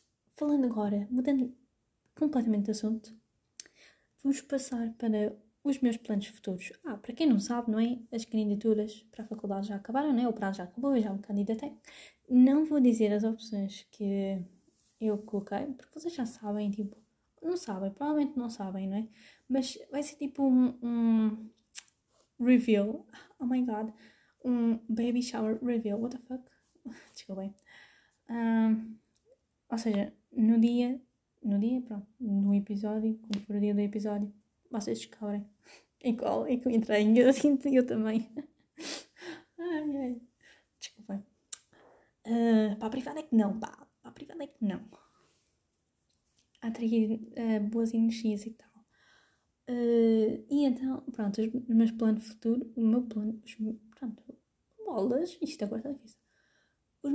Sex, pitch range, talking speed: female, 215-255 Hz, 155 wpm